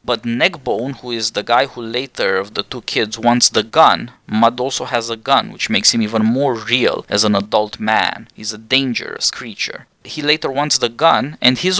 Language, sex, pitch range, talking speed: English, male, 115-145 Hz, 210 wpm